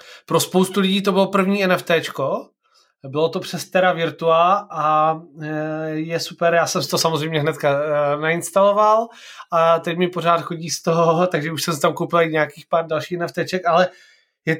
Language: Czech